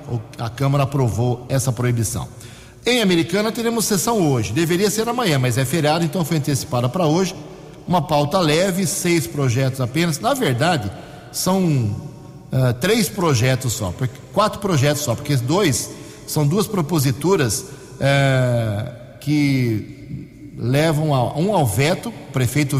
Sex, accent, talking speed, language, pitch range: male, Brazilian, 135 wpm, Portuguese, 130-175 Hz